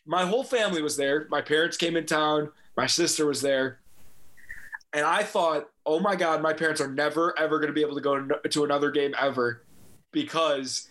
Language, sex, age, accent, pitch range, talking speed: English, male, 20-39, American, 145-170 Hz, 200 wpm